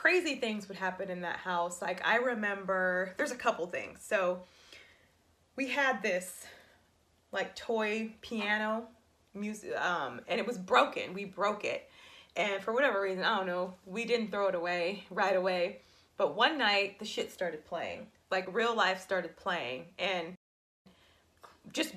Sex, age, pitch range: female, 20-39, 180-235 Hz